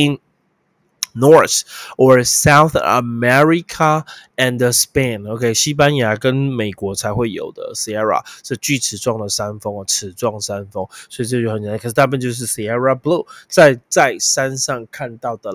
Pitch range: 115-155 Hz